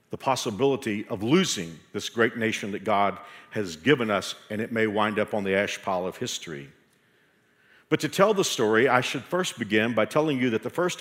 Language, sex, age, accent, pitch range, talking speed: English, male, 50-69, American, 110-140 Hz, 205 wpm